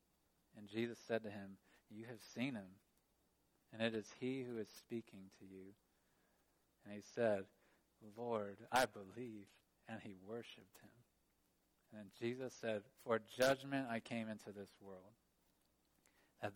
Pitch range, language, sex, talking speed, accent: 100-115 Hz, English, male, 140 wpm, American